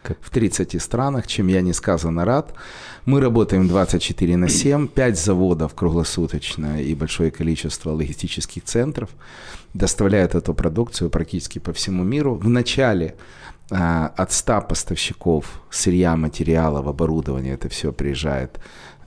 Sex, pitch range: male, 75-100 Hz